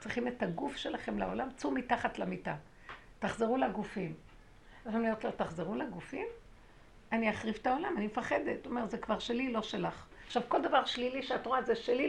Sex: female